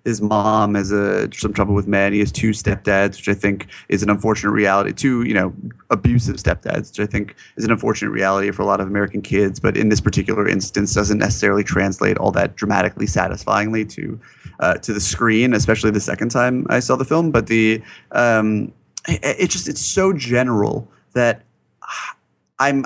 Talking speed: 190 wpm